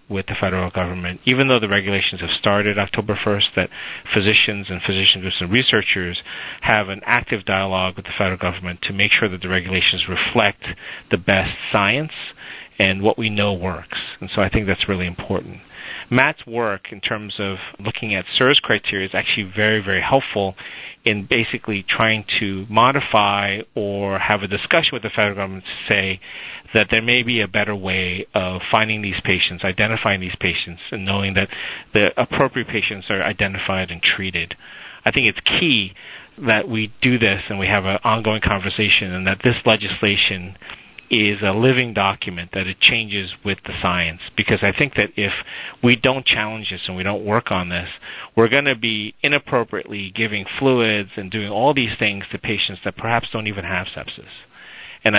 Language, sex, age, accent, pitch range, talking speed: English, male, 40-59, American, 95-110 Hz, 180 wpm